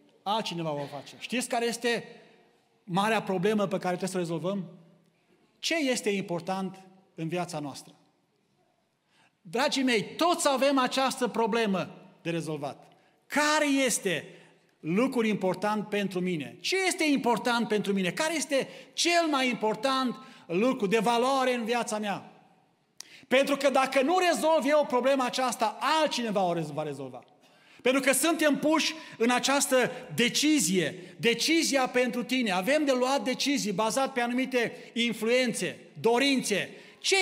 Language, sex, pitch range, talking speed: Romanian, male, 195-270 Hz, 135 wpm